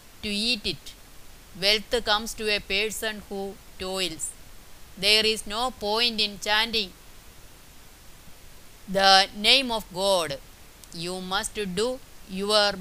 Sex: female